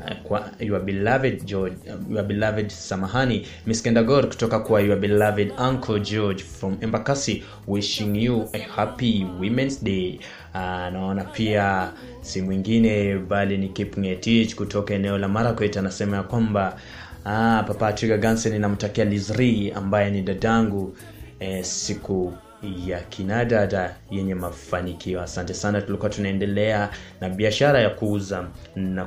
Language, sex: Swahili, male